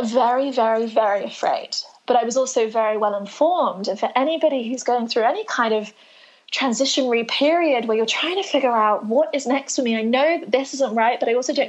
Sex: female